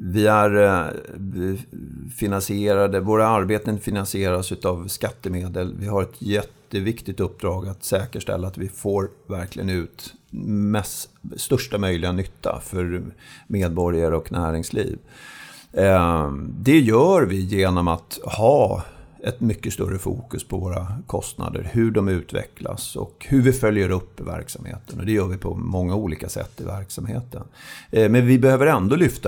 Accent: native